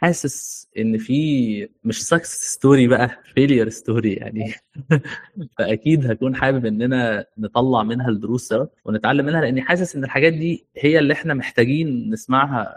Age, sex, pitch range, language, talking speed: 20-39, male, 120-145 Hz, Arabic, 135 wpm